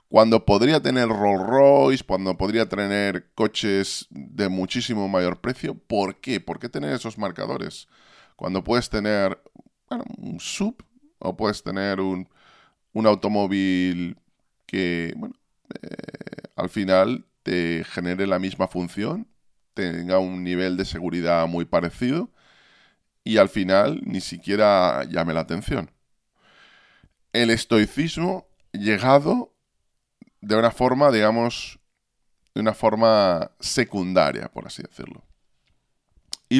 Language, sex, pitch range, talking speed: Spanish, male, 90-120 Hz, 115 wpm